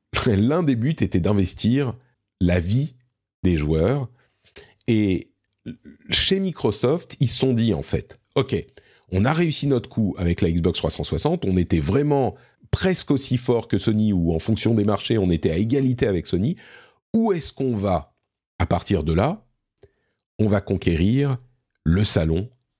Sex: male